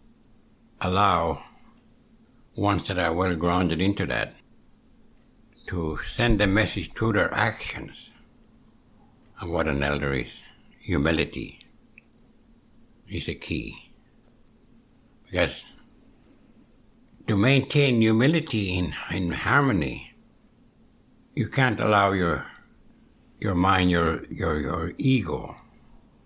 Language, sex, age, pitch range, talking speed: English, male, 60-79, 85-110 Hz, 95 wpm